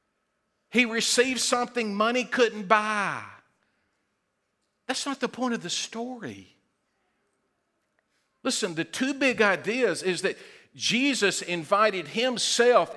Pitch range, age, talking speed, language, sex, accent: 190-240 Hz, 50-69, 105 wpm, English, male, American